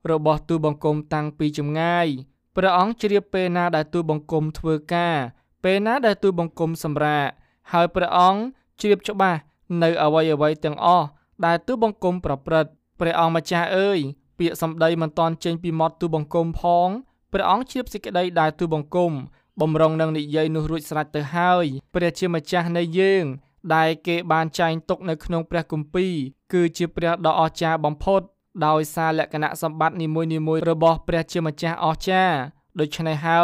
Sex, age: male, 20-39